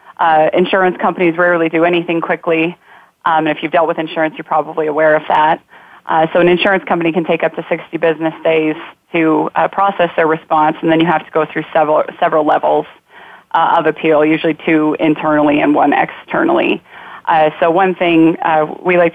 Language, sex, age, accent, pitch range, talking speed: English, female, 30-49, American, 155-170 Hz, 195 wpm